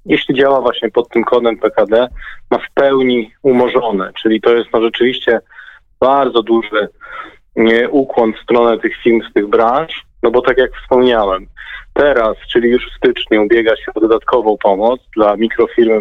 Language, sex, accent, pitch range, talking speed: Polish, male, native, 110-130 Hz, 165 wpm